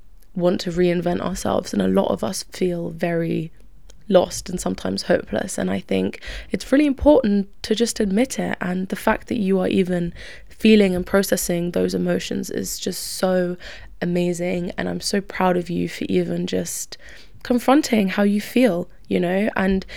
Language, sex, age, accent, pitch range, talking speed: English, female, 20-39, British, 175-225 Hz, 170 wpm